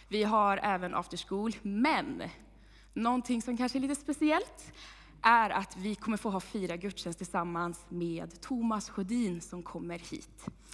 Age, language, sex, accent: 20-39, Swedish, female, native